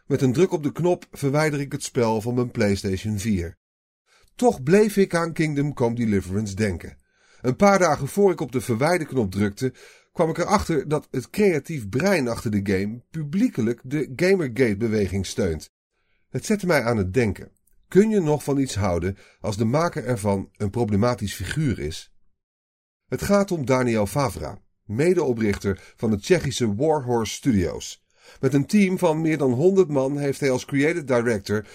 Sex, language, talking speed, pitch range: male, Dutch, 170 wpm, 100-150 Hz